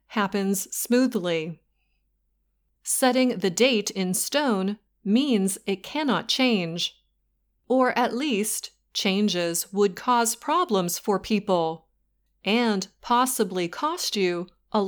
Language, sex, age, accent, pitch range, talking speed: English, female, 30-49, American, 180-245 Hz, 100 wpm